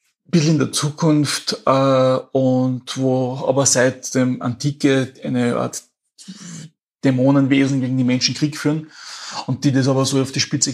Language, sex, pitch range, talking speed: German, male, 125-140 Hz, 145 wpm